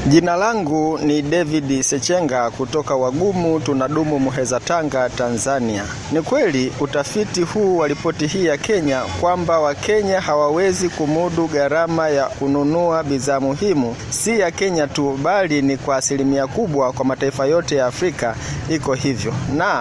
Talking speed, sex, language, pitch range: 140 wpm, male, Swahili, 135-165 Hz